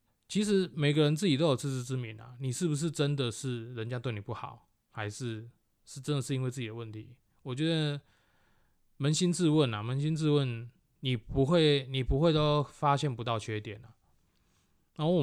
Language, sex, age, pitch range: Chinese, male, 20-39, 110-135 Hz